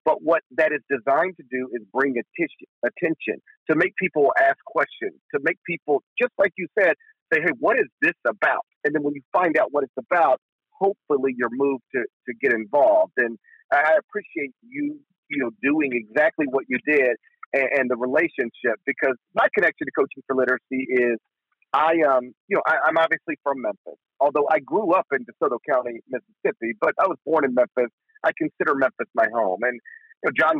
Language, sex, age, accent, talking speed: English, male, 40-59, American, 190 wpm